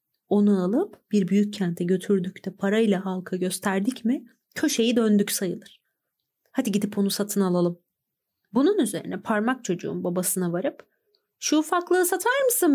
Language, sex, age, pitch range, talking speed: Turkish, female, 30-49, 185-255 Hz, 135 wpm